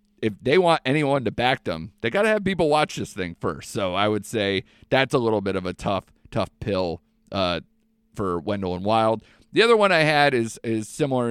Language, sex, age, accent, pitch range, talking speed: English, male, 40-59, American, 95-140 Hz, 225 wpm